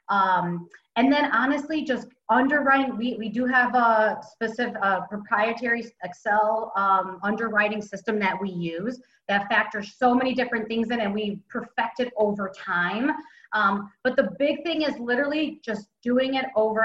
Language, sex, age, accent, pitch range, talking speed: English, female, 30-49, American, 210-255 Hz, 160 wpm